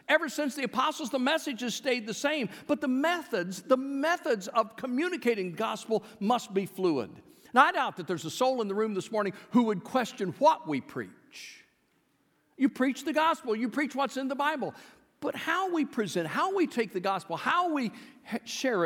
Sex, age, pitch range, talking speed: male, 50-69, 195-275 Hz, 195 wpm